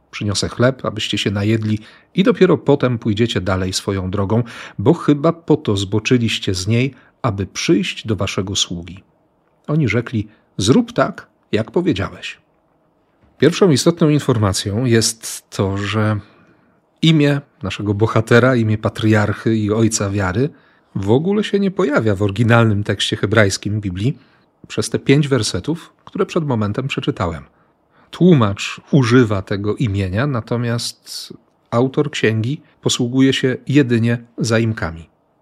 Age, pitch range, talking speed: 40-59, 105-140 Hz, 125 wpm